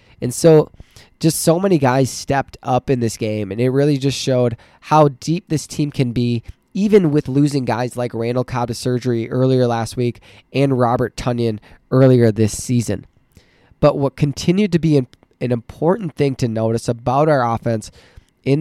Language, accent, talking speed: English, American, 175 wpm